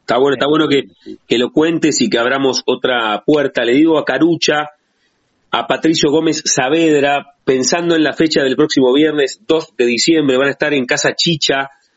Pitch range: 130-170 Hz